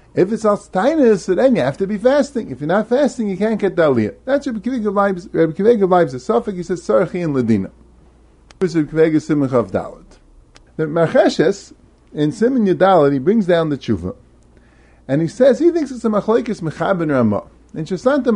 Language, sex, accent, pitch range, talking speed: English, male, American, 135-210 Hz, 185 wpm